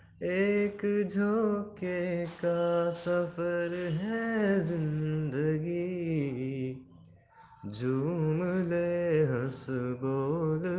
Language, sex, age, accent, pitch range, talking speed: Hindi, male, 20-39, native, 155-195 Hz, 55 wpm